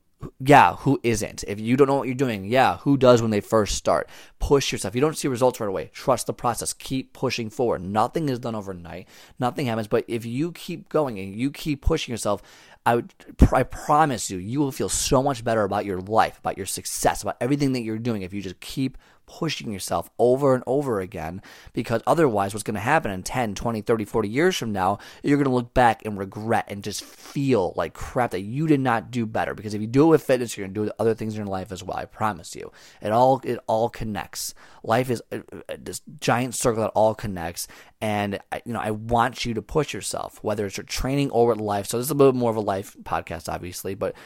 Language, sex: English, male